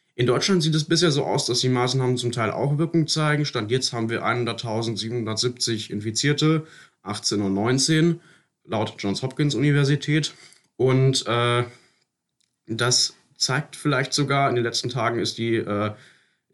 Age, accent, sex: 30-49, German, male